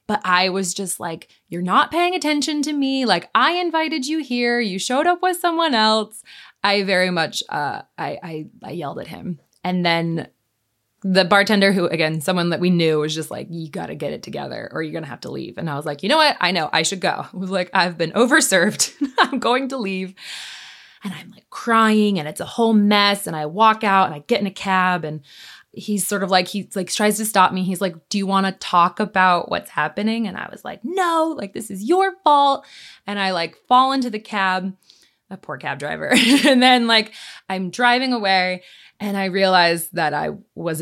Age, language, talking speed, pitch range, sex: 20-39, English, 225 wpm, 175-225 Hz, female